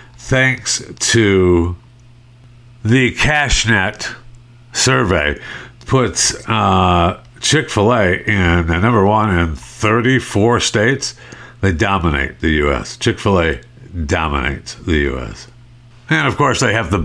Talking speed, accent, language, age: 100 wpm, American, English, 60-79